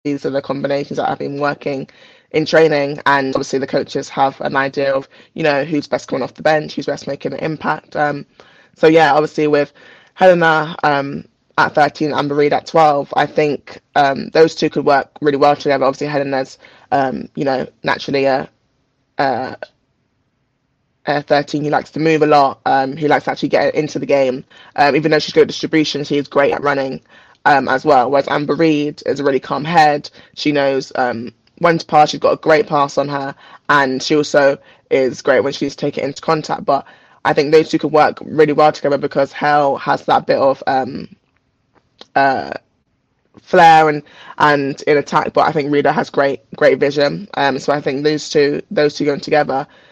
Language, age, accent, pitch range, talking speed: English, 20-39, British, 140-150 Hz, 200 wpm